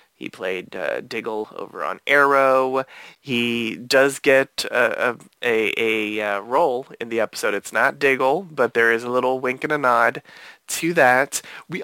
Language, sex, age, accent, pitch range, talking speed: English, male, 20-39, American, 125-160 Hz, 165 wpm